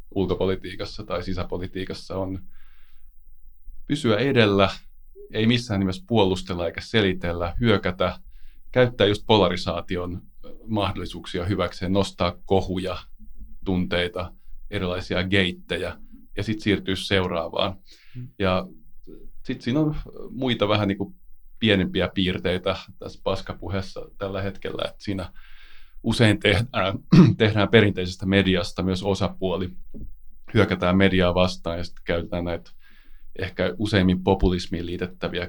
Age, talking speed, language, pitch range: 30-49, 105 wpm, Finnish, 90-105 Hz